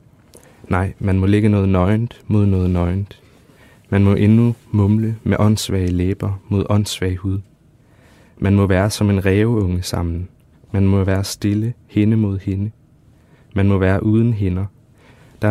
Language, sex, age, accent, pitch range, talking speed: Danish, male, 30-49, native, 95-110 Hz, 150 wpm